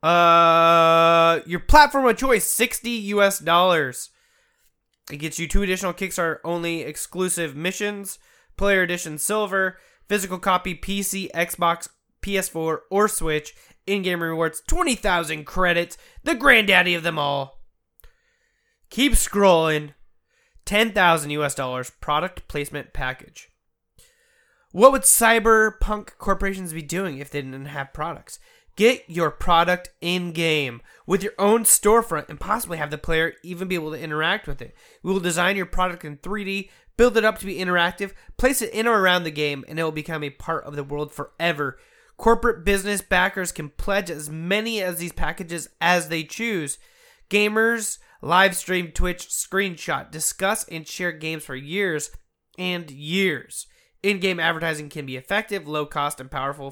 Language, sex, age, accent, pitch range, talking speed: English, male, 20-39, American, 160-200 Hz, 150 wpm